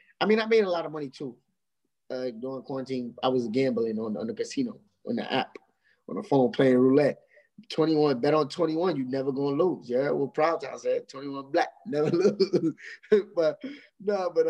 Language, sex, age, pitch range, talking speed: English, male, 20-39, 135-185 Hz, 200 wpm